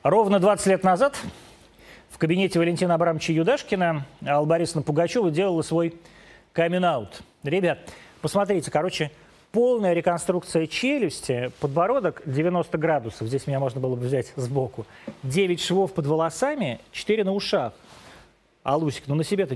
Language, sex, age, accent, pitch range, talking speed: Russian, male, 30-49, native, 140-180 Hz, 130 wpm